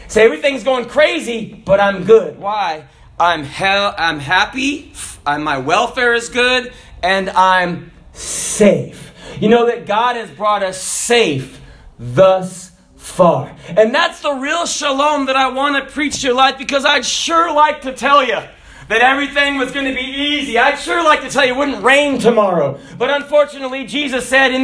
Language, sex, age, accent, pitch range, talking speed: English, male, 40-59, American, 185-270 Hz, 180 wpm